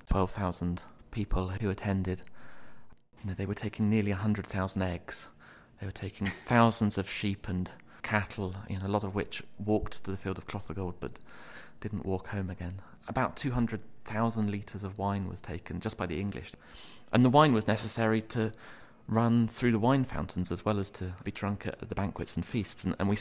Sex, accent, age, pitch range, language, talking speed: male, British, 30-49, 90-105 Hz, English, 205 wpm